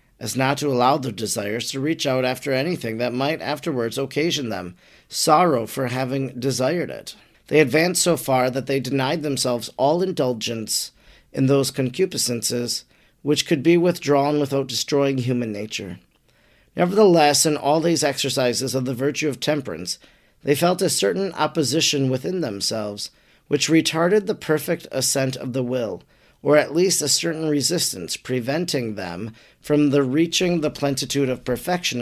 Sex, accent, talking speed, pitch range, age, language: male, American, 155 wpm, 130-160 Hz, 40-59, English